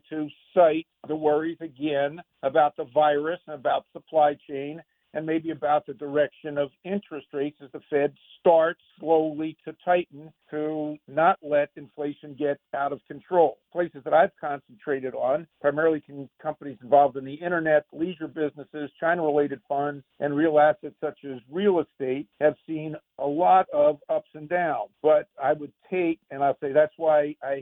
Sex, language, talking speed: male, English, 165 wpm